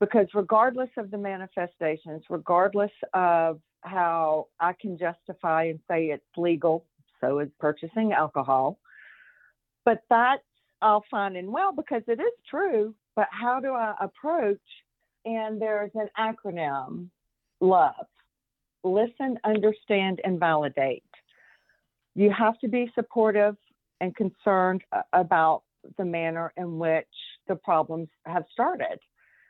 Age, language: 50-69, English